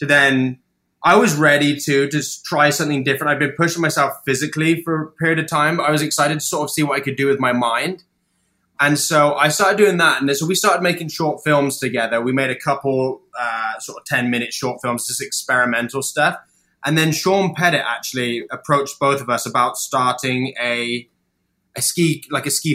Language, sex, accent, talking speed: English, male, British, 215 wpm